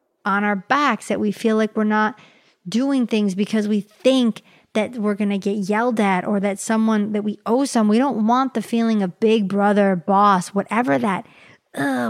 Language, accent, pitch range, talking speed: English, American, 200-240 Hz, 200 wpm